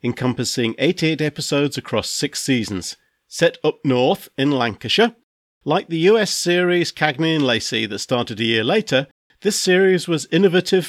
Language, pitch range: English, 120-170 Hz